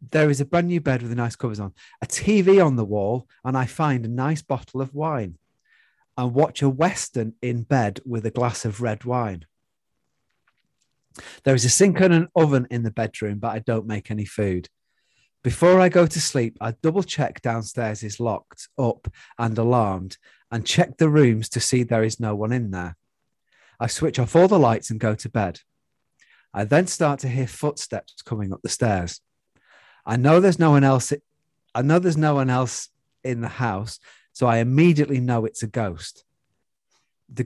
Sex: male